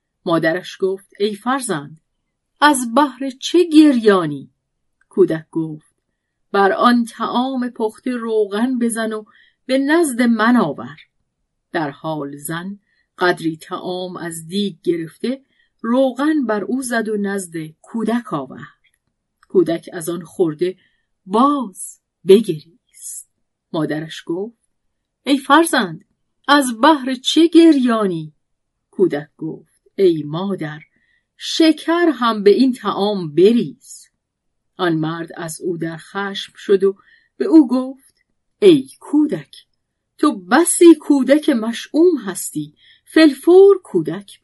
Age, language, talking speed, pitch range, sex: 40-59, Persian, 110 wpm, 170-265 Hz, female